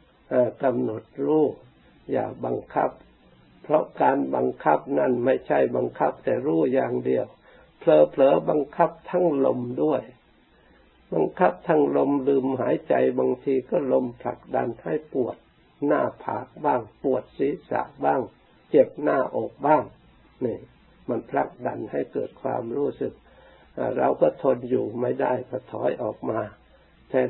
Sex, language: male, Thai